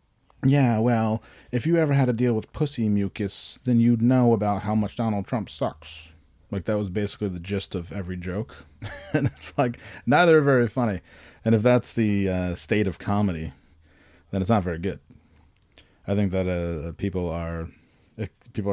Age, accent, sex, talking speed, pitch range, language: 30-49, American, male, 180 wpm, 90-110 Hz, English